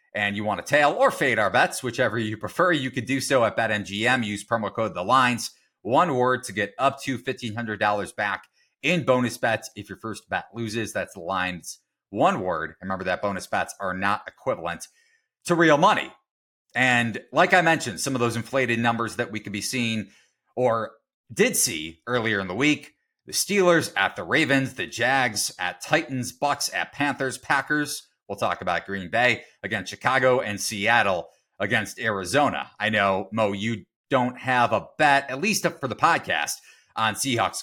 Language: English